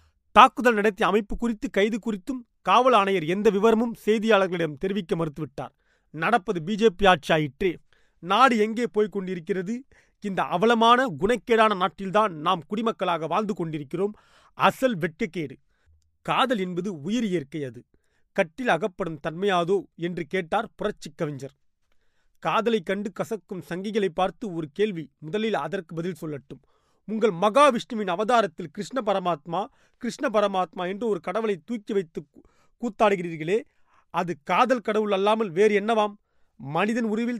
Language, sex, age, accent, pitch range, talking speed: Tamil, male, 30-49, native, 180-225 Hz, 115 wpm